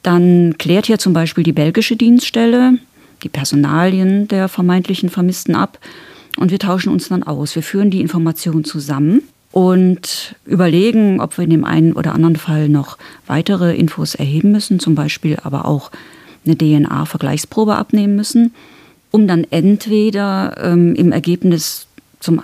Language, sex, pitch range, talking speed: German, female, 160-200 Hz, 145 wpm